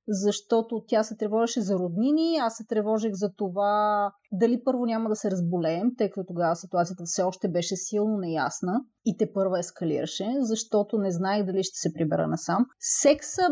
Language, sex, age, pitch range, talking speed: Bulgarian, female, 30-49, 195-240 Hz, 175 wpm